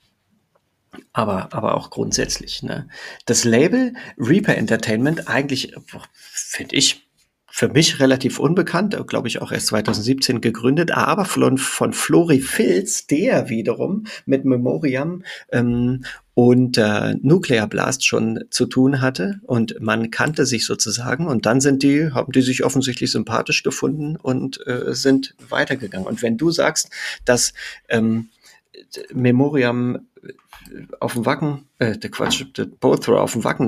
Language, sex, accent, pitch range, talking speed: German, male, German, 115-145 Hz, 140 wpm